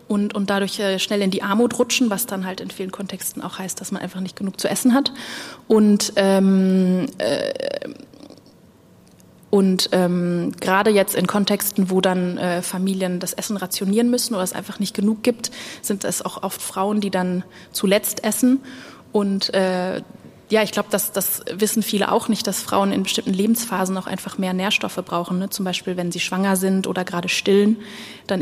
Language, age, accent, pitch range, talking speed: German, 20-39, German, 185-210 Hz, 180 wpm